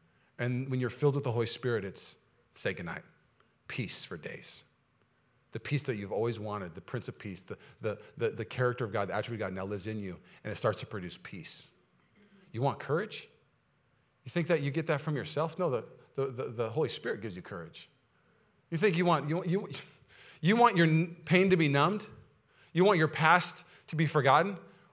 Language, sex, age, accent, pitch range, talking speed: English, male, 40-59, American, 105-145 Hz, 210 wpm